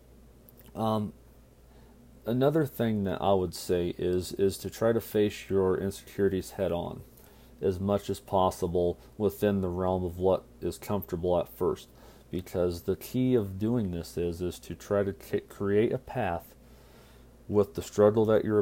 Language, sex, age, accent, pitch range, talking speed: English, male, 40-59, American, 90-105 Hz, 160 wpm